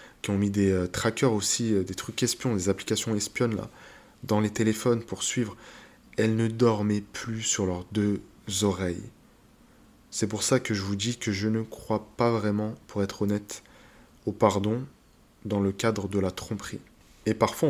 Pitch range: 100-115 Hz